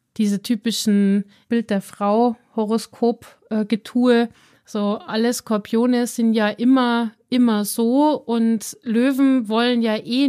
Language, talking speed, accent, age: German, 95 wpm, German, 30-49